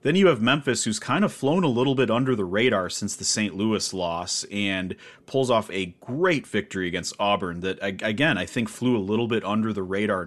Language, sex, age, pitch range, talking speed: English, male, 30-49, 100-115 Hz, 220 wpm